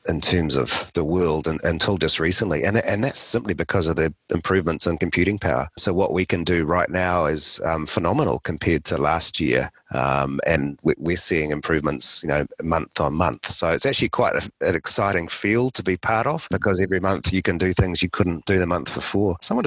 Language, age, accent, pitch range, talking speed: English, 30-49, Australian, 80-100 Hz, 215 wpm